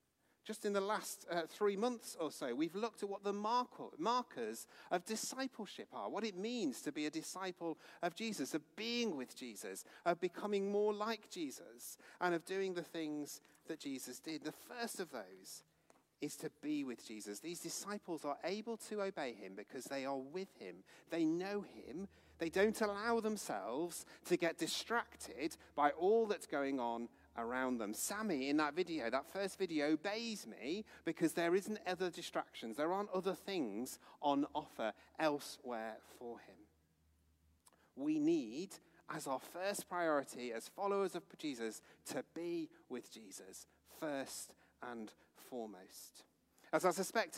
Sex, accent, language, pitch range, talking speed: male, British, English, 150-205 Hz, 160 wpm